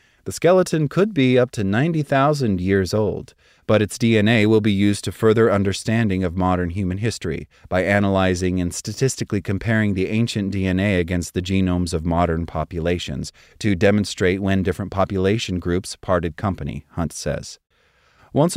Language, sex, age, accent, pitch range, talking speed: English, male, 30-49, American, 90-115 Hz, 150 wpm